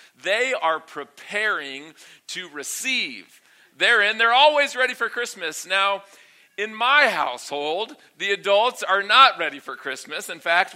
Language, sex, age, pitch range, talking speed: English, male, 40-59, 160-220 Hz, 140 wpm